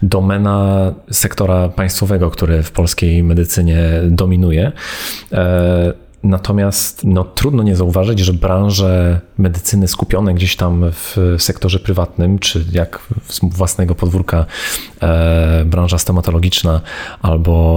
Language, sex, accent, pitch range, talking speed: Polish, male, native, 85-100 Hz, 100 wpm